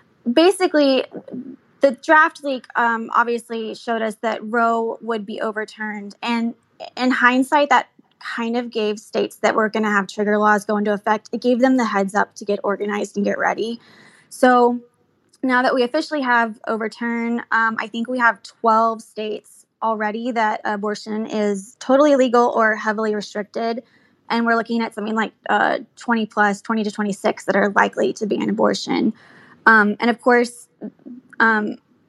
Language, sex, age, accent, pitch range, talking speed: English, female, 20-39, American, 210-235 Hz, 170 wpm